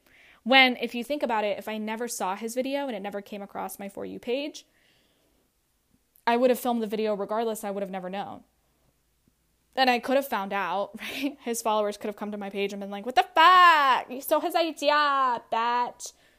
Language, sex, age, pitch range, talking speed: English, female, 10-29, 190-225 Hz, 215 wpm